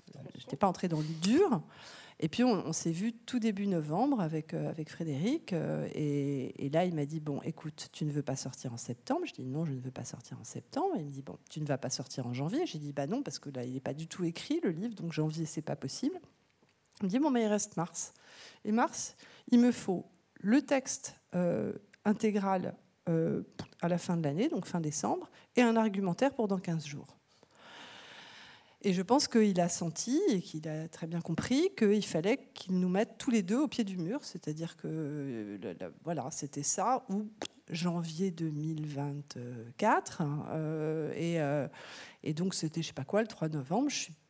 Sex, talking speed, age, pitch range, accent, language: female, 215 wpm, 40-59, 150-210 Hz, French, French